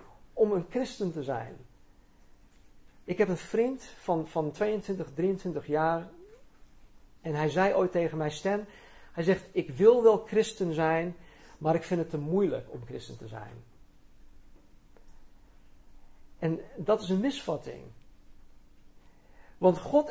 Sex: male